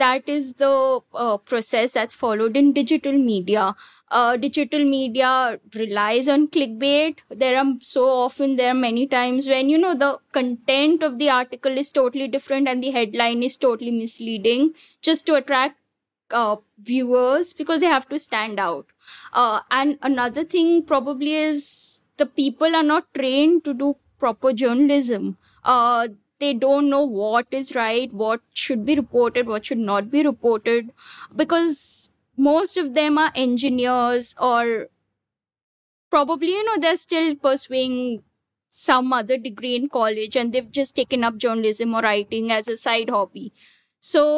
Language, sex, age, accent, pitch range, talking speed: English, female, 20-39, Indian, 235-285 Hz, 155 wpm